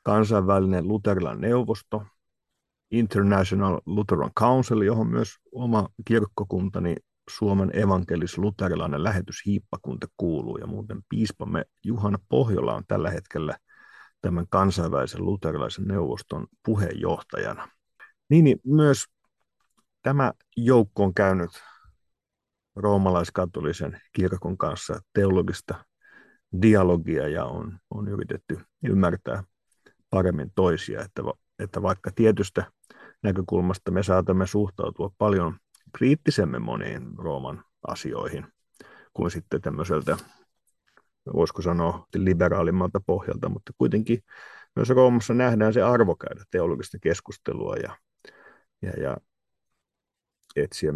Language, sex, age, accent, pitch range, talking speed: Finnish, male, 50-69, native, 95-110 Hz, 95 wpm